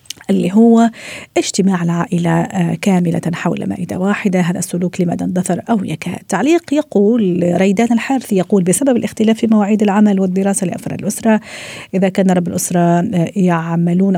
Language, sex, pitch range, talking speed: Arabic, female, 180-210 Hz, 135 wpm